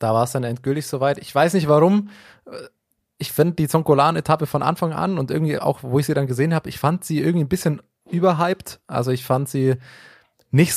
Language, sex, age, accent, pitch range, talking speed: German, male, 20-39, German, 130-155 Hz, 210 wpm